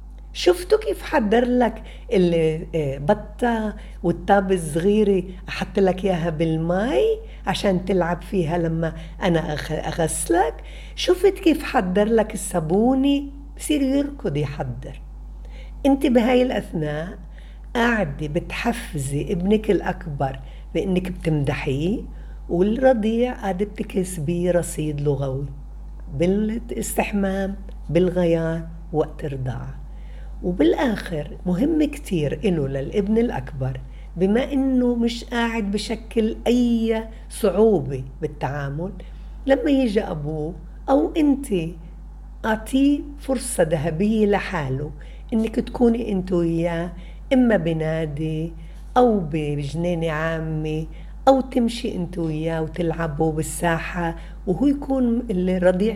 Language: Arabic